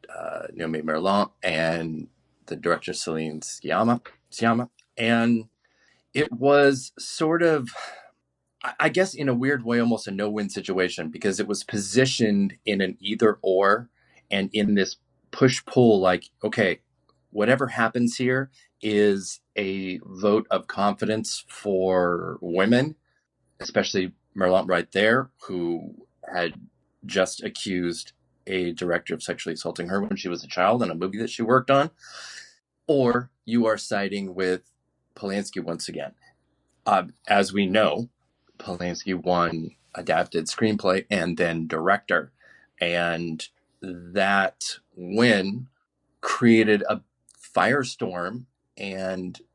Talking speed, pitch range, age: 120 wpm, 90-115 Hz, 30-49